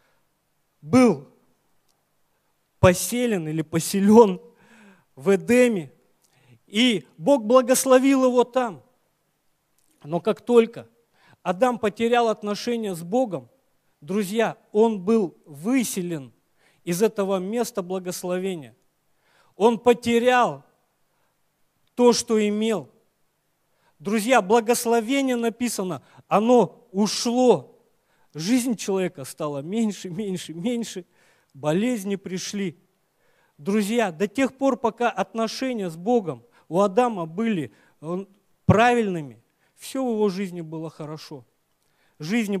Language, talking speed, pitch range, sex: Russian, 90 wpm, 170-235 Hz, male